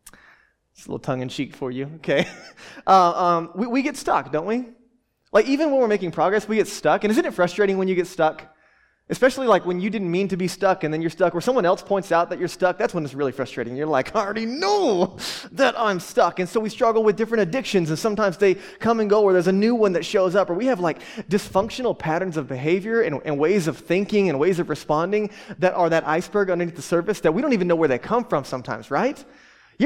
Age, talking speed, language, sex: 20-39, 245 wpm, English, male